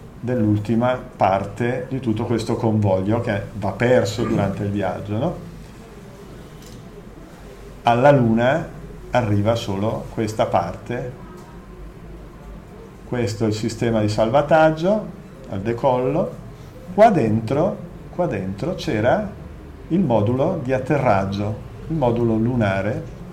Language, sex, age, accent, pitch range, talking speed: Italian, male, 50-69, native, 110-145 Hz, 100 wpm